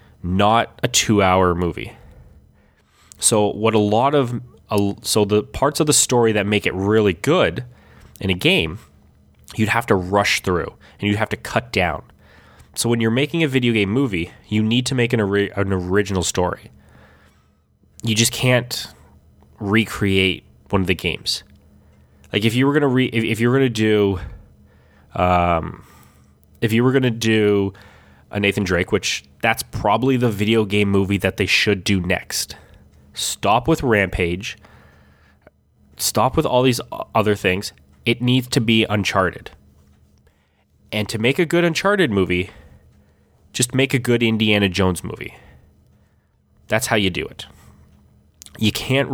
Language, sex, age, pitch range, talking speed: English, male, 20-39, 90-115 Hz, 155 wpm